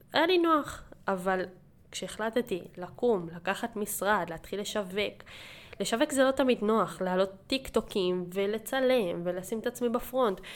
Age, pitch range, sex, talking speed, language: 10-29, 185-230 Hz, female, 125 wpm, Hebrew